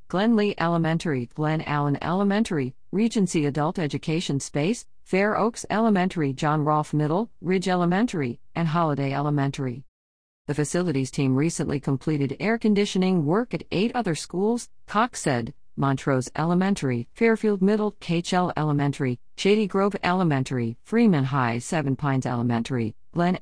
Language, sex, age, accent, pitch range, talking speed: English, female, 50-69, American, 140-190 Hz, 125 wpm